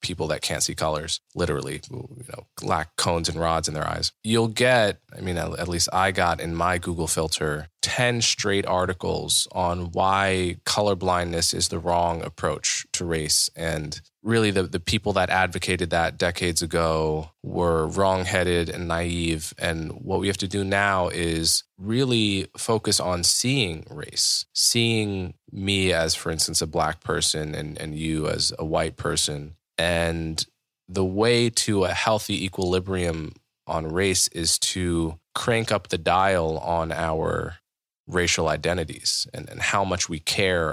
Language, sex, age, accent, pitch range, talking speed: English, male, 20-39, American, 85-100 Hz, 155 wpm